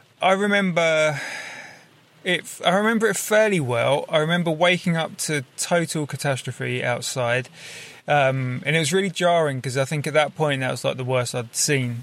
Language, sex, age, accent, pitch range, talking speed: English, male, 20-39, British, 130-160 Hz, 175 wpm